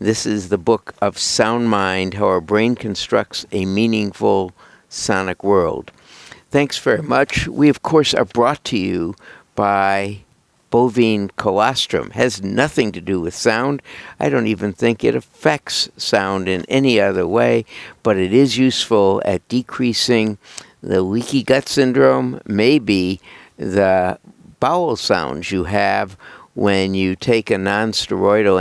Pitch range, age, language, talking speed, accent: 95-115 Hz, 60-79, English, 140 wpm, American